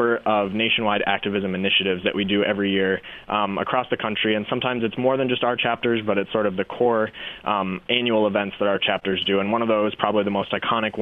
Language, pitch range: English, 100-115 Hz